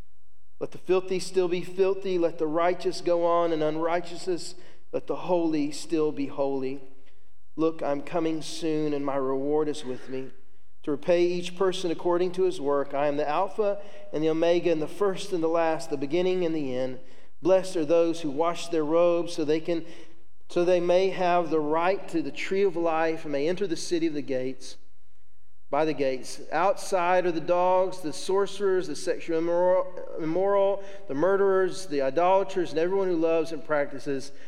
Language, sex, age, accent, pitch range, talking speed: English, male, 40-59, American, 140-180 Hz, 185 wpm